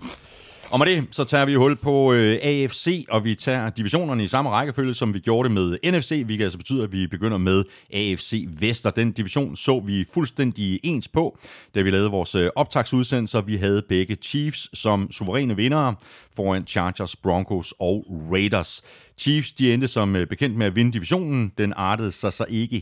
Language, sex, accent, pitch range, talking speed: Danish, male, native, 95-130 Hz, 180 wpm